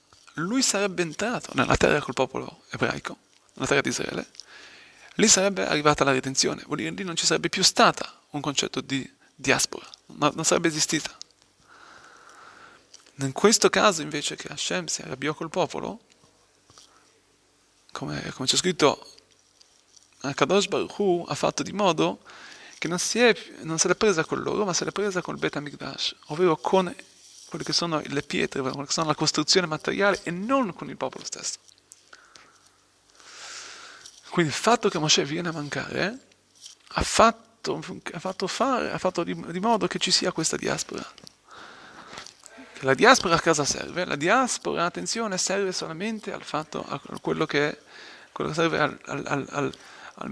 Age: 30-49